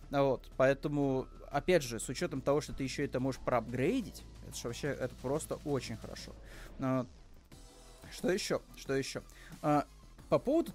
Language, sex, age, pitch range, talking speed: Russian, male, 20-39, 130-160 Hz, 140 wpm